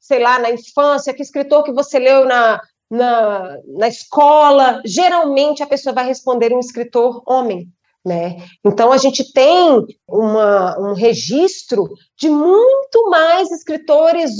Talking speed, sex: 130 wpm, female